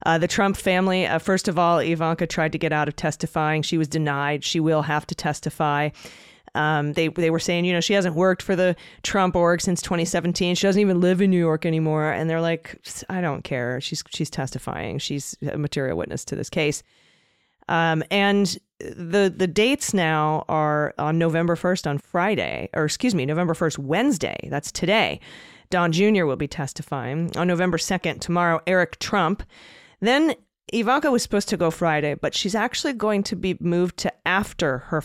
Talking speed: 195 wpm